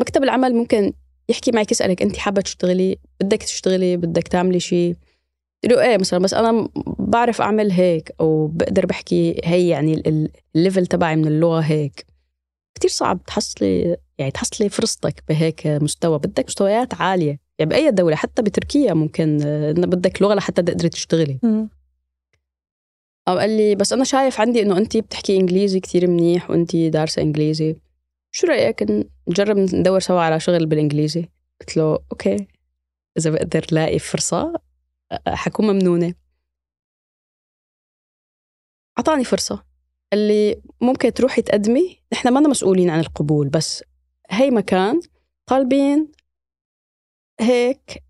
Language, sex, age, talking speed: Arabic, female, 20-39, 130 wpm